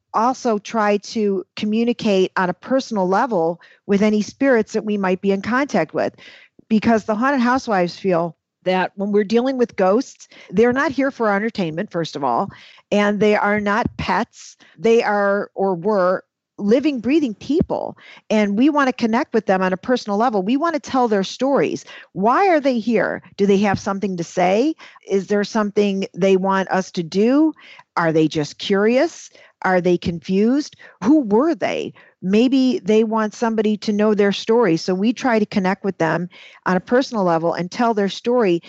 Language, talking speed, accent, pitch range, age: English, 185 wpm, American, 190-240 Hz, 40-59